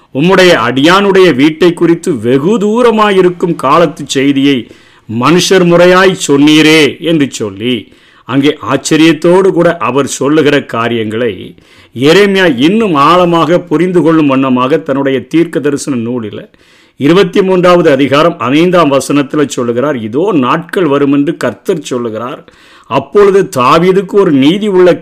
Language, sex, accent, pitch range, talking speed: Tamil, male, native, 135-170 Hz, 110 wpm